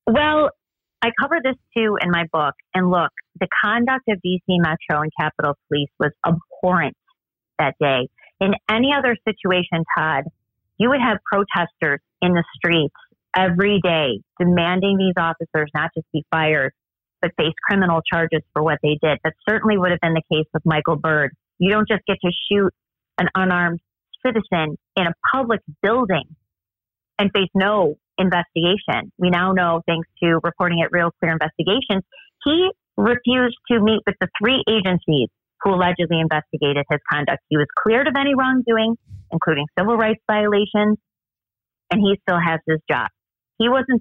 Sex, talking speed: female, 160 wpm